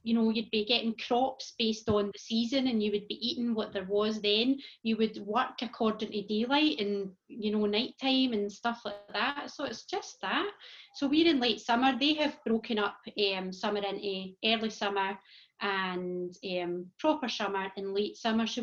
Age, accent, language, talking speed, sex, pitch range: 30-49, British, English, 190 wpm, female, 200-235 Hz